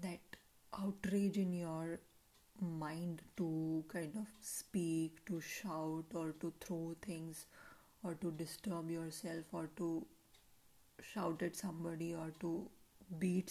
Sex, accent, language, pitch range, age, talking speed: female, Indian, English, 170-200 Hz, 30-49, 115 wpm